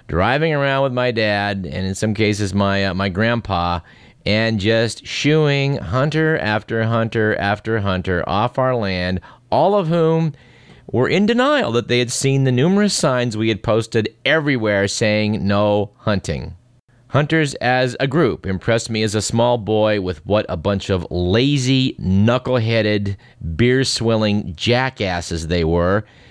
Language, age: English, 40-59